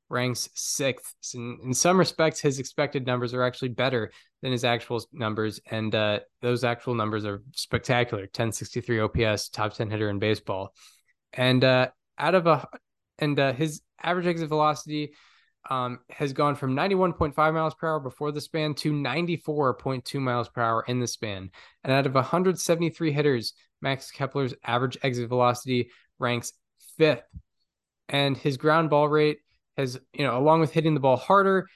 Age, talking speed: 10-29, 165 wpm